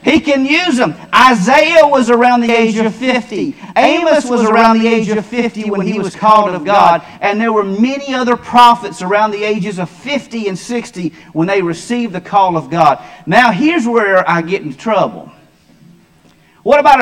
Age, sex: 40-59, male